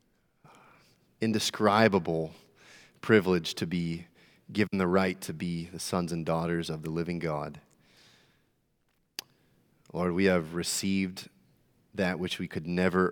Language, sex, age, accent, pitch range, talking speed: English, male, 30-49, American, 85-95 Hz, 120 wpm